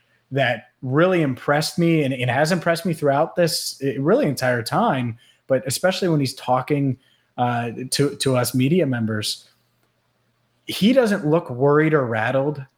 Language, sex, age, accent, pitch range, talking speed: English, male, 30-49, American, 125-155 Hz, 150 wpm